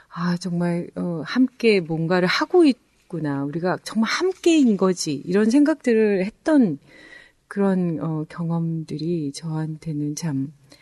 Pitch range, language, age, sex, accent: 155-225 Hz, Korean, 40-59, female, native